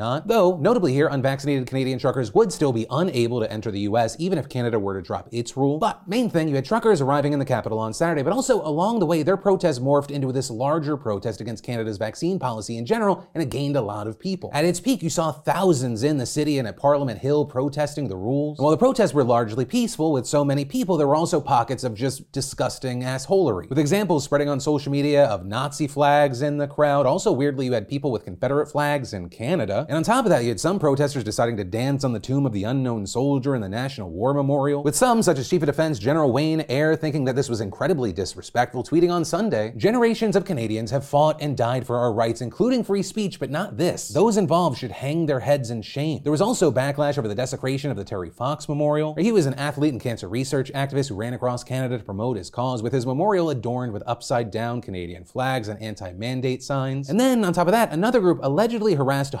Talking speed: 235 wpm